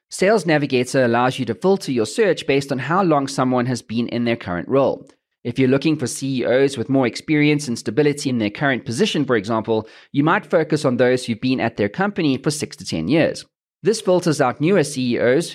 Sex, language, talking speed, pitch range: male, English, 210 wpm, 120-160 Hz